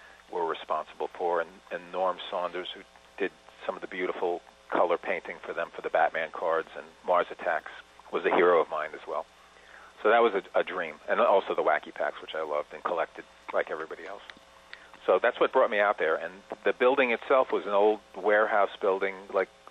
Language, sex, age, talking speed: English, male, 40-59, 205 wpm